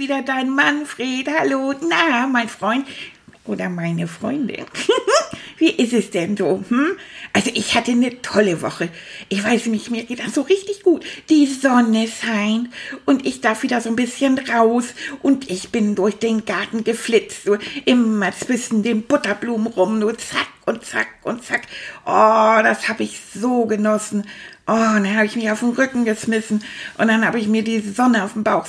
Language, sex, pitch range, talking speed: German, female, 205-250 Hz, 180 wpm